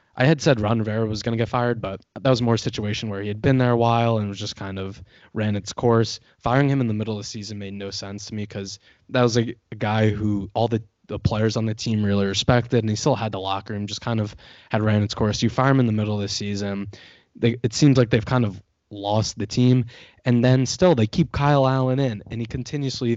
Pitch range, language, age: 105-125 Hz, English, 20-39